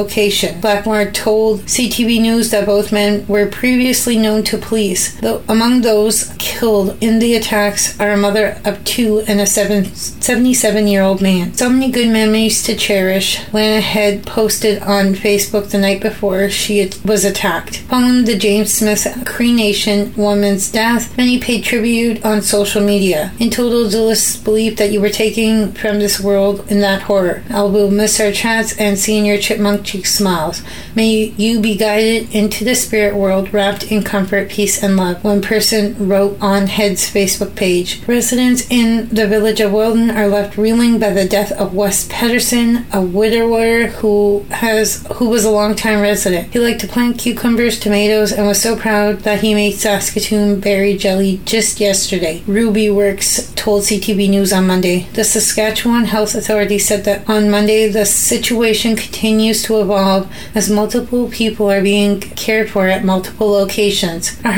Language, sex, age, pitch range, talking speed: French, female, 30-49, 200-220 Hz, 165 wpm